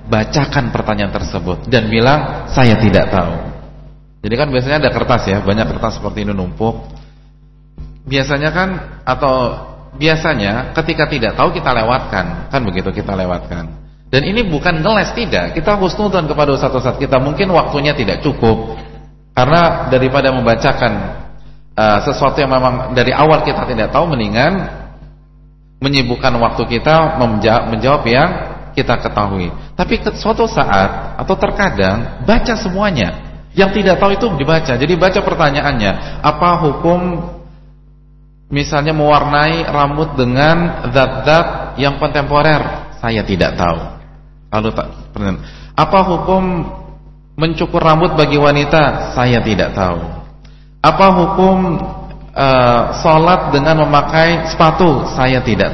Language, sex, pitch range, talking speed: English, male, 120-160 Hz, 125 wpm